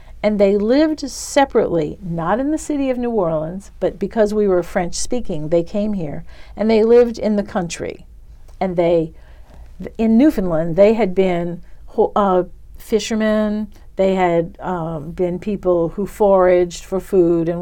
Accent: American